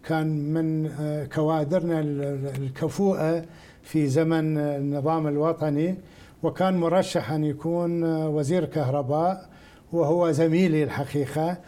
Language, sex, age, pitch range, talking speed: Arabic, male, 60-79, 150-175 Hz, 85 wpm